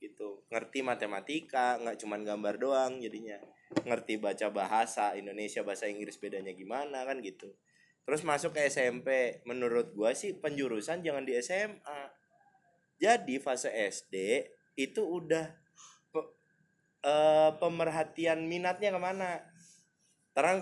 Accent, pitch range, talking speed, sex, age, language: native, 125-180 Hz, 115 wpm, male, 20-39, Indonesian